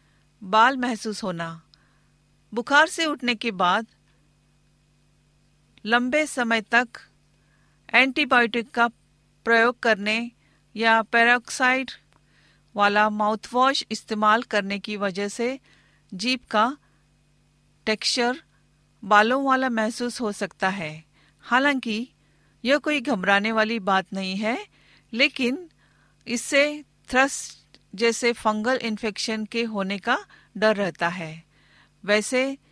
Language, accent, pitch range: Hindi, native, 210-255 Hz